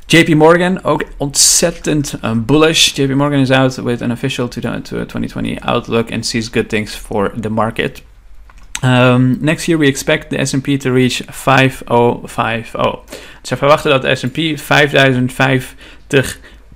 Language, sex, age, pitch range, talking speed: Dutch, male, 40-59, 115-135 Hz, 130 wpm